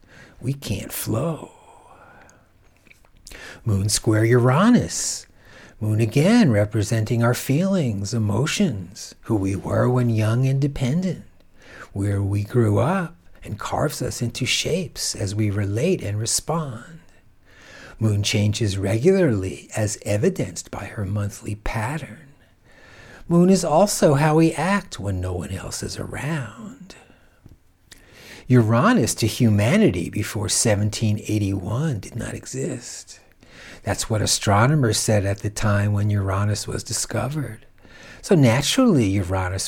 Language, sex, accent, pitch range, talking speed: English, male, American, 100-140 Hz, 115 wpm